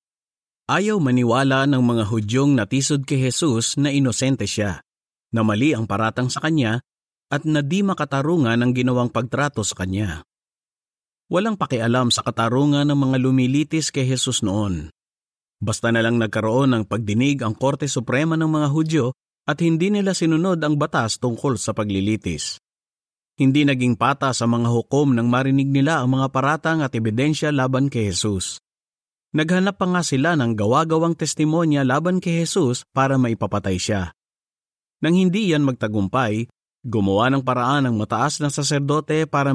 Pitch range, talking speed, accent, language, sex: 115-150 Hz, 150 wpm, native, Filipino, male